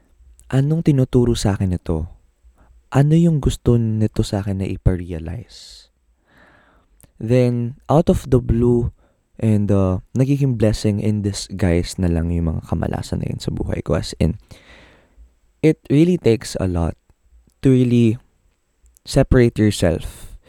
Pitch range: 85-115 Hz